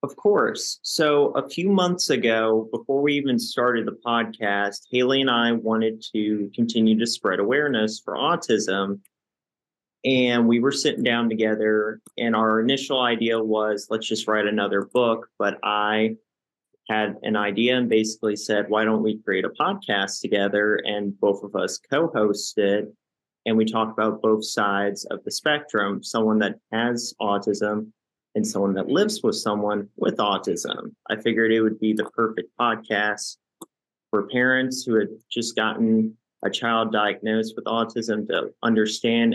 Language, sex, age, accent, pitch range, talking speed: English, male, 30-49, American, 105-115 Hz, 155 wpm